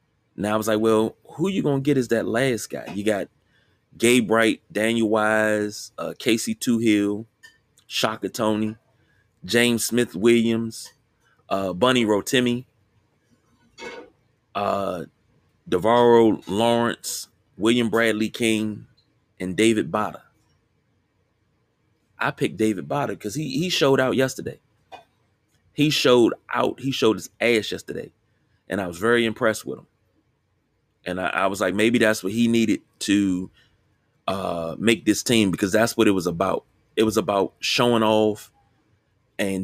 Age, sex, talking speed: 30-49, male, 140 wpm